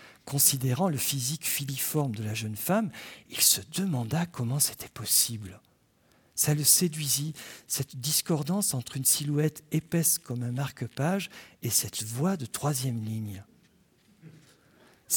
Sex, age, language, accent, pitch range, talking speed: male, 50-69, French, French, 120-170 Hz, 130 wpm